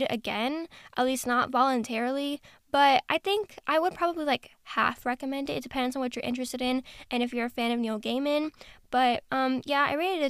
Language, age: English, 10-29